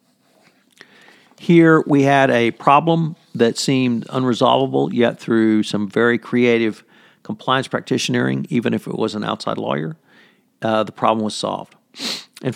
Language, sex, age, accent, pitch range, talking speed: English, male, 50-69, American, 115-150 Hz, 135 wpm